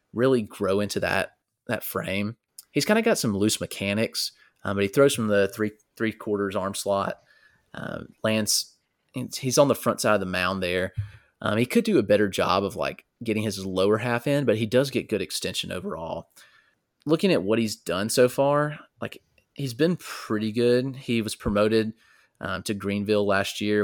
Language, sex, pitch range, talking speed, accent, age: English, male, 100-120 Hz, 190 wpm, American, 30-49